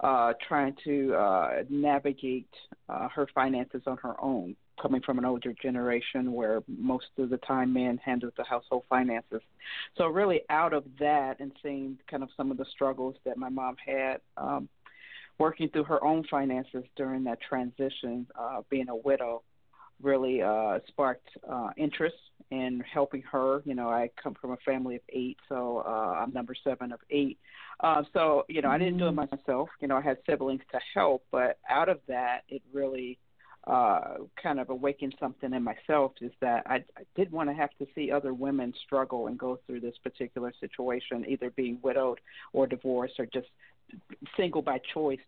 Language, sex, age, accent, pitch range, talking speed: English, female, 50-69, American, 125-140 Hz, 185 wpm